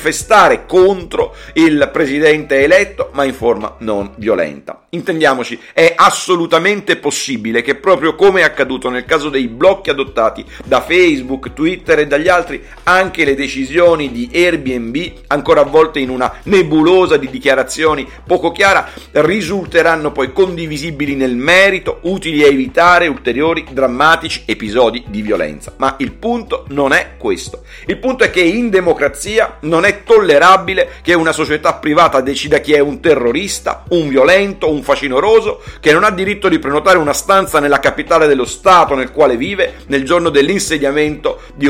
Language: Italian